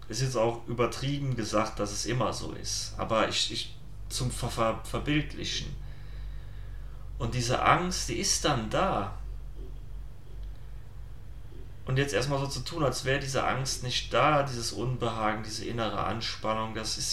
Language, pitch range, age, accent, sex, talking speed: German, 110-130 Hz, 30-49, German, male, 155 wpm